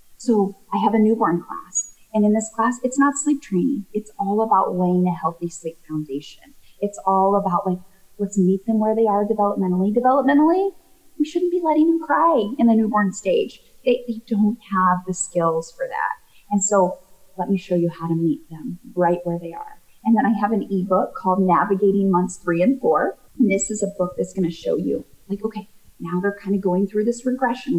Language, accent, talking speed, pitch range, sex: English, American, 210 wpm, 175-230 Hz, female